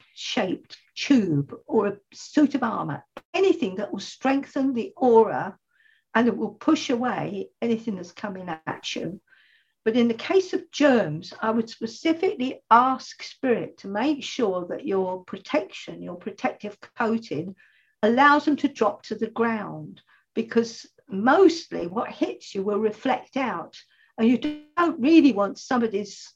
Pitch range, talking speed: 205-290 Hz, 145 wpm